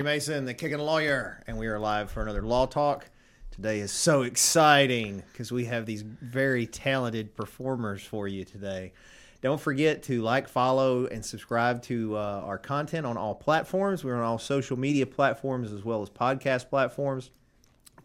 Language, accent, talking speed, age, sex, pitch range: English, American, 175 wpm, 30-49, male, 110-135 Hz